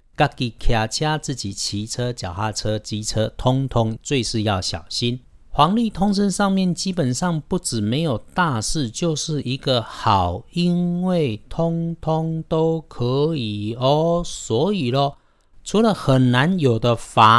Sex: male